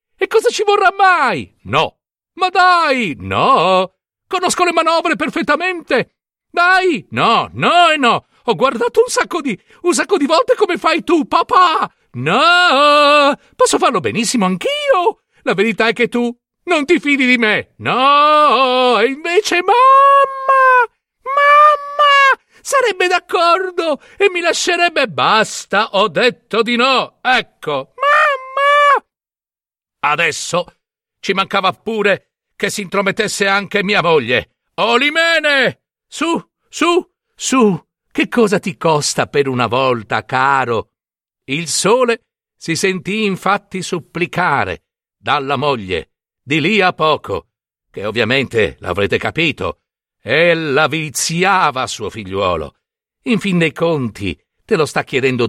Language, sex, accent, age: Italian, male, native, 50-69